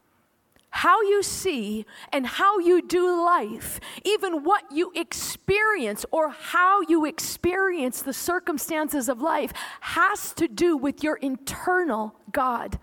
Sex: female